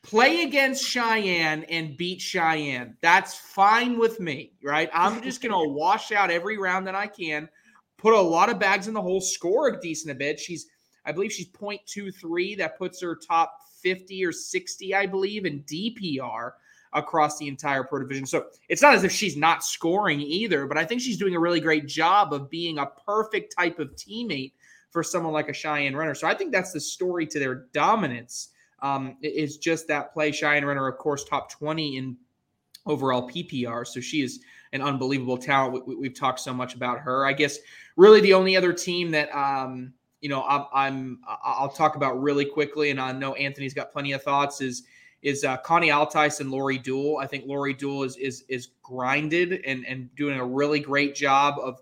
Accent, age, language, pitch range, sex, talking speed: American, 20-39, English, 135-180 Hz, male, 205 wpm